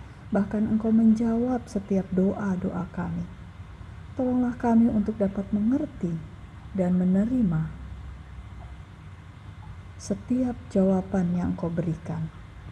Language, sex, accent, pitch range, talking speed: Indonesian, female, native, 170-215 Hz, 85 wpm